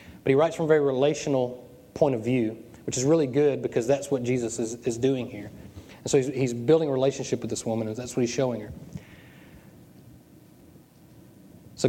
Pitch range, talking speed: 120-150 Hz, 195 wpm